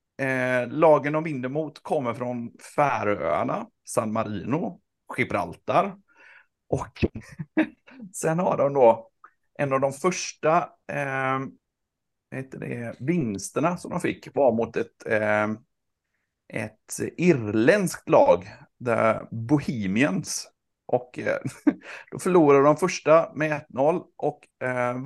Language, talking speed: Swedish, 100 wpm